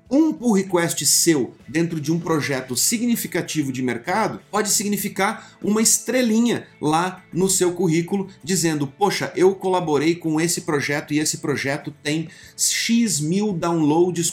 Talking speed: 140 wpm